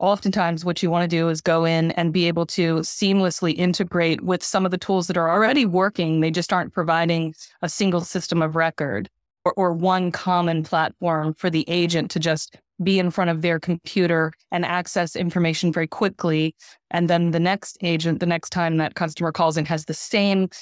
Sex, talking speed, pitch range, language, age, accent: female, 200 wpm, 165-180 Hz, English, 20-39, American